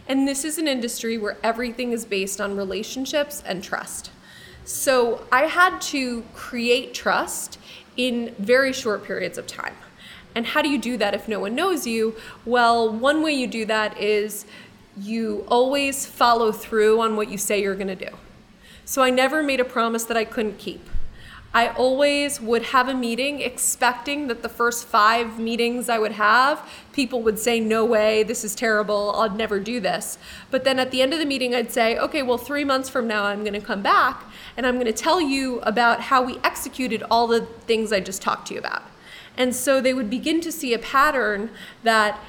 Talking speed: 200 wpm